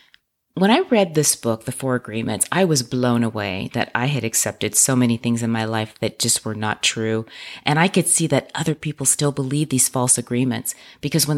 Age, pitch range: 30-49, 125-175 Hz